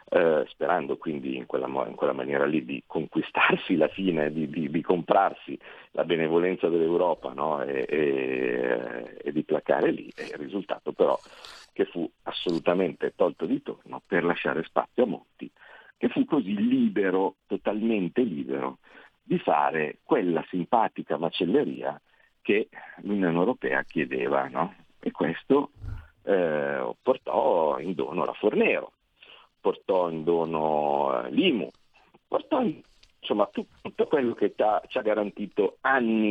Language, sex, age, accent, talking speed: Italian, male, 50-69, native, 135 wpm